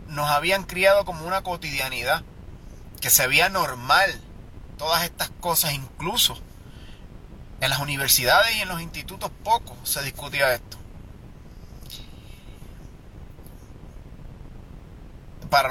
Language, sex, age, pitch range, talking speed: Spanish, male, 30-49, 120-170 Hz, 100 wpm